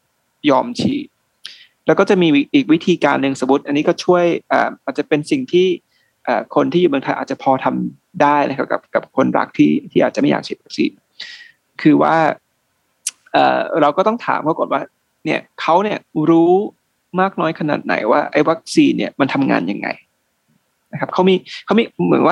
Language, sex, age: Thai, male, 20-39